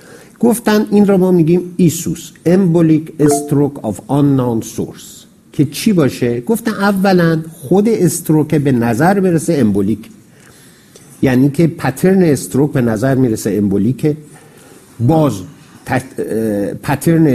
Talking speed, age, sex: 115 wpm, 50-69, male